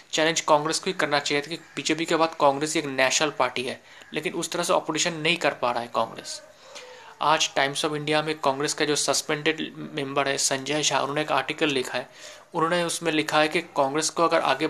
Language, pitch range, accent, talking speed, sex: Hindi, 140-160 Hz, native, 215 wpm, male